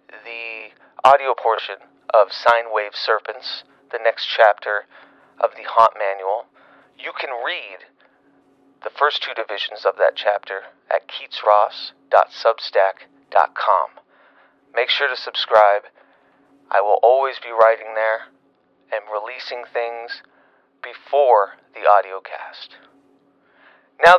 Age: 30-49